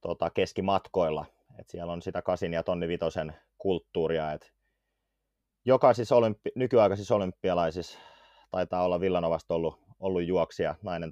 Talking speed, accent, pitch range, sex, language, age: 125 wpm, native, 85-100 Hz, male, Finnish, 30-49